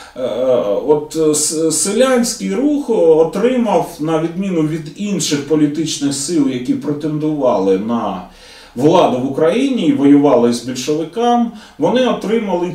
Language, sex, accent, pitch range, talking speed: Russian, male, native, 140-220 Hz, 105 wpm